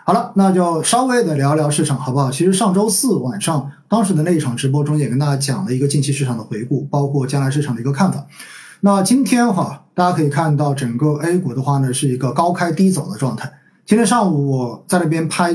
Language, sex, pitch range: Chinese, male, 140-185 Hz